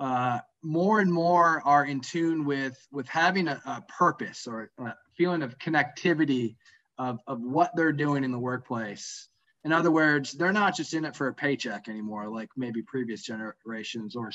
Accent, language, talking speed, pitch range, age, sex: American, English, 180 wpm, 130-165 Hz, 20-39, male